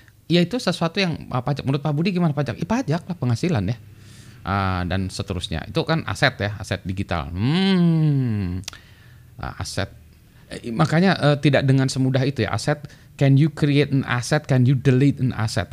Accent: native